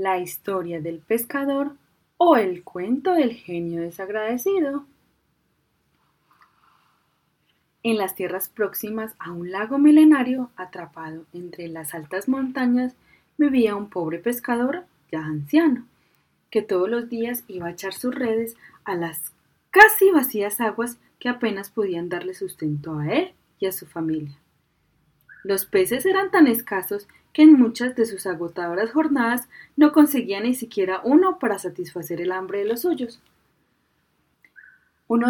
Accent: Colombian